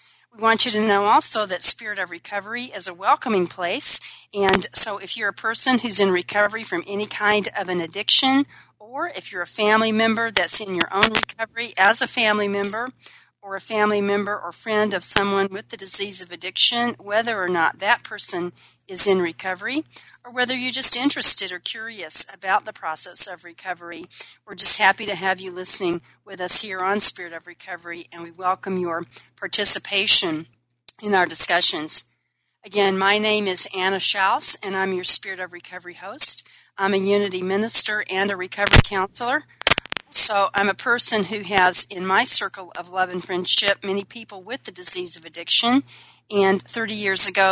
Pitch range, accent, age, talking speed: 180-210 Hz, American, 40-59, 180 wpm